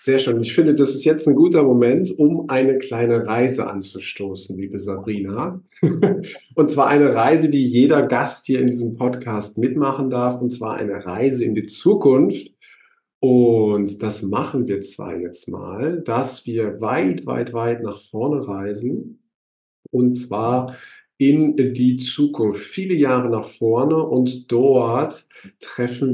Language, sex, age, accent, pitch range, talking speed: German, male, 40-59, German, 115-155 Hz, 145 wpm